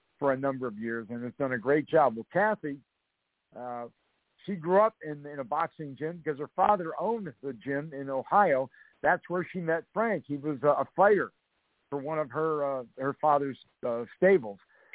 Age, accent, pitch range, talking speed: 50-69, American, 135-170 Hz, 195 wpm